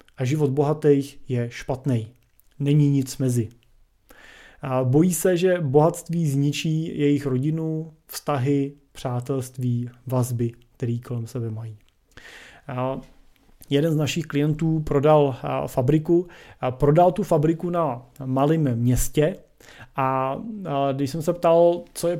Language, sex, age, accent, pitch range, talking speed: Czech, male, 30-49, native, 130-155 Hz, 110 wpm